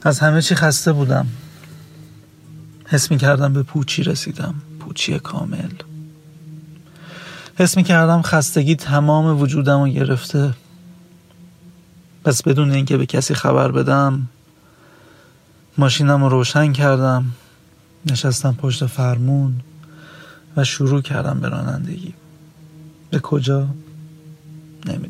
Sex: male